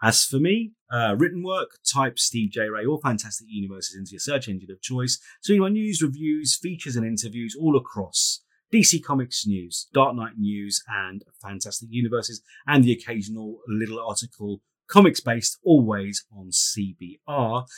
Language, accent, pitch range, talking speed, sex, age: English, British, 105-135 Hz, 160 wpm, male, 30-49